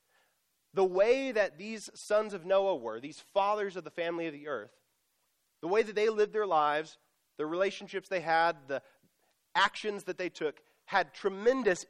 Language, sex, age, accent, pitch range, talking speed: English, male, 30-49, American, 150-195 Hz, 170 wpm